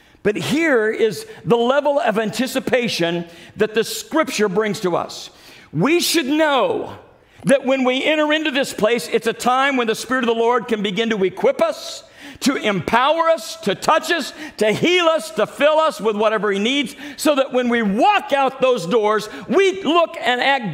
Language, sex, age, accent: English, male, 50-69, American